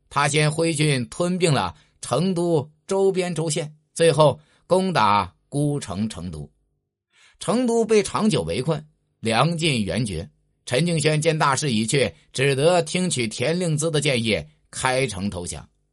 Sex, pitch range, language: male, 105-165 Hz, Chinese